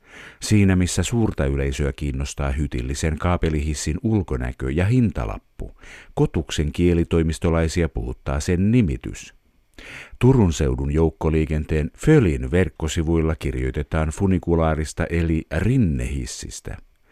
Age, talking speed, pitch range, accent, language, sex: 50-69, 85 wpm, 75-100 Hz, native, Finnish, male